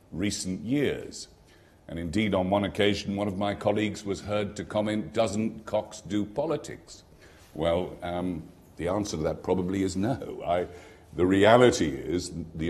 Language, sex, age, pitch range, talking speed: English, male, 50-69, 80-105 Hz, 150 wpm